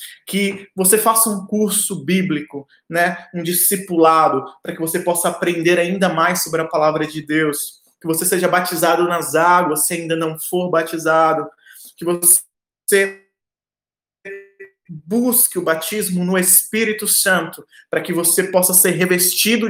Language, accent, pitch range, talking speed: Portuguese, Brazilian, 165-190 Hz, 140 wpm